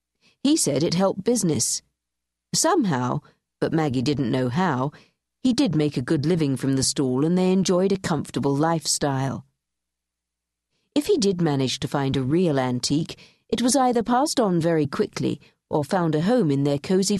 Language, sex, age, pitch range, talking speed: English, female, 50-69, 135-185 Hz, 170 wpm